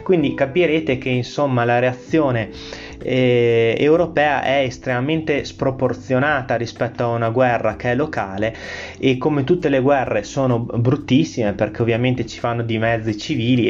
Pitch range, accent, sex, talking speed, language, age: 115-135 Hz, native, male, 145 wpm, Italian, 20-39